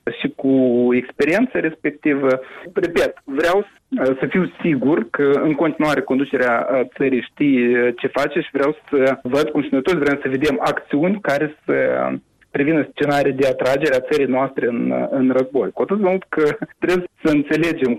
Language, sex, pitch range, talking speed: Romanian, male, 130-175 Hz, 160 wpm